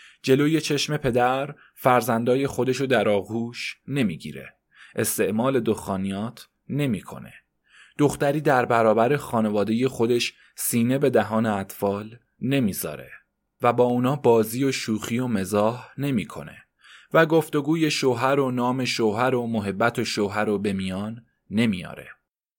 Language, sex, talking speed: Persian, male, 115 wpm